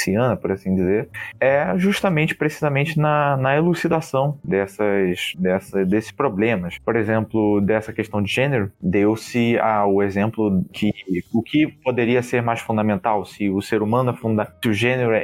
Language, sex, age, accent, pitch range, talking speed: Portuguese, male, 20-39, Brazilian, 100-125 Hz, 150 wpm